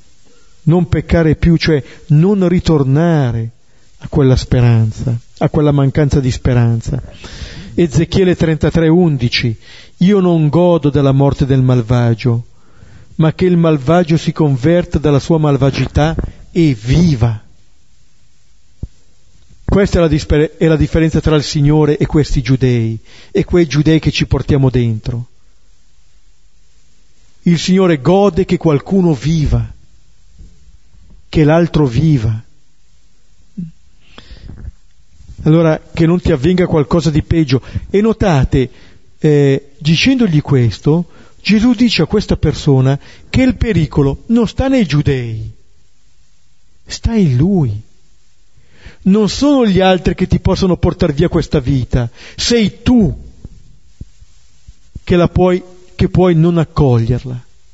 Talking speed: 115 wpm